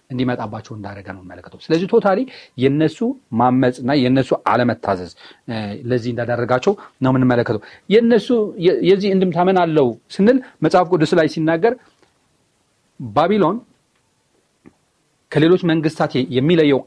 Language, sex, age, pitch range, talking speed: Amharic, male, 40-59, 115-155 Hz, 105 wpm